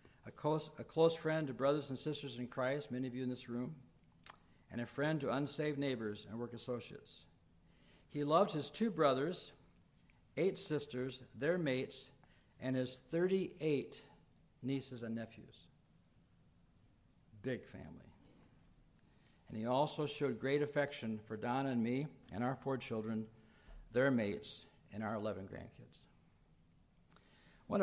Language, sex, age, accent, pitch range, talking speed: English, male, 60-79, American, 120-145 Hz, 135 wpm